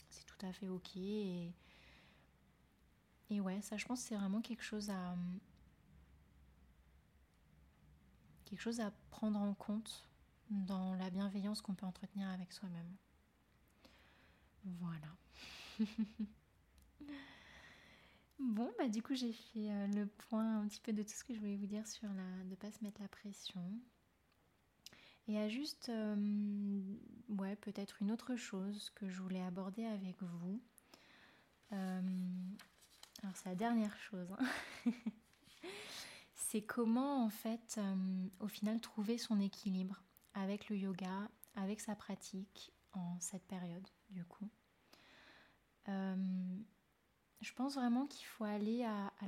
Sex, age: female, 30-49